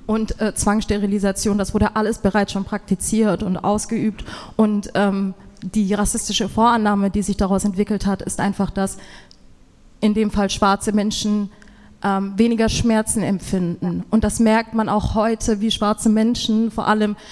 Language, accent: German, German